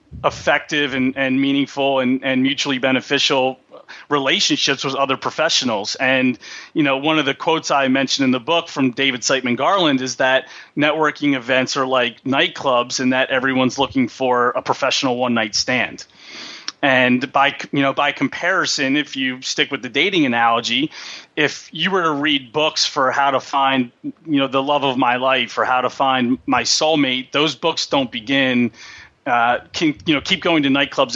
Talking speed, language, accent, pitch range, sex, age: 180 wpm, English, American, 130-150 Hz, male, 30-49